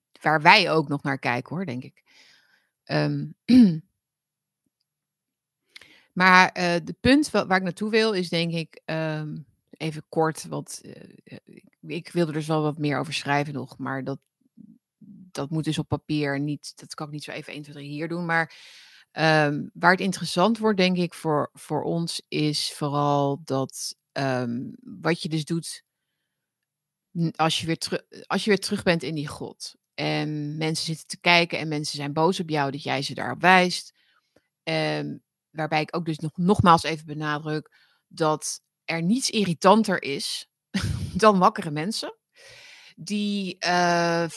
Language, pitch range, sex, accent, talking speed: Dutch, 150-190 Hz, female, Dutch, 165 wpm